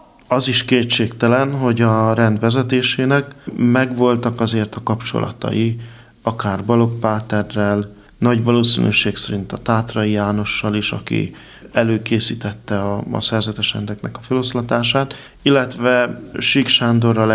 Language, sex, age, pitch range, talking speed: Hungarian, male, 50-69, 105-125 Hz, 105 wpm